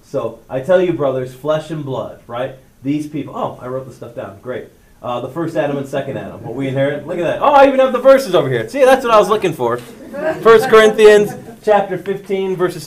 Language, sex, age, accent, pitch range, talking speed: English, male, 30-49, American, 130-190 Hz, 240 wpm